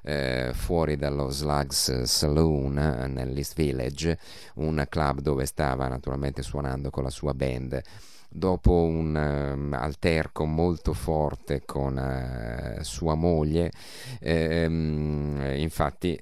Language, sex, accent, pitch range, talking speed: Italian, male, native, 70-80 Hz, 105 wpm